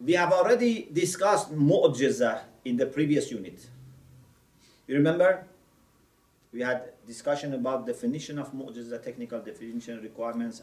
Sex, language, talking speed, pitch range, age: male, English, 120 wpm, 120-170 Hz, 40-59